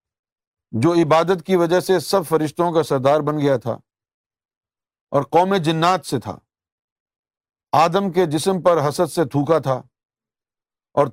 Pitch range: 130-180 Hz